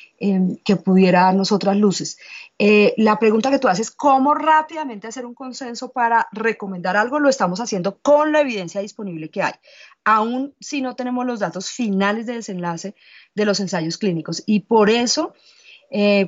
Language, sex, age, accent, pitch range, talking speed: Spanish, female, 30-49, Colombian, 185-225 Hz, 165 wpm